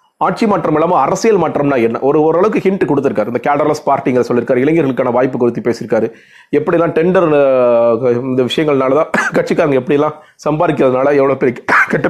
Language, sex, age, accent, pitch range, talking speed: Tamil, male, 30-49, native, 130-155 Hz, 145 wpm